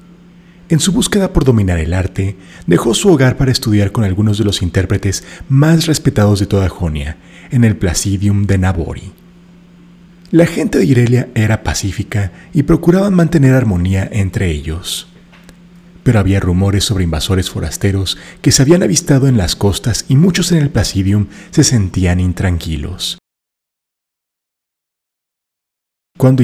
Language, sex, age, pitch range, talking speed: Spanish, male, 30-49, 90-145 Hz, 140 wpm